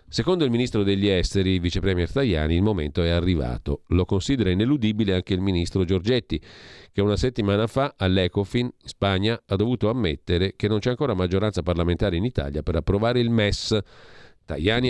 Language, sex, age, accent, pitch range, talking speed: Italian, male, 40-59, native, 90-115 Hz, 165 wpm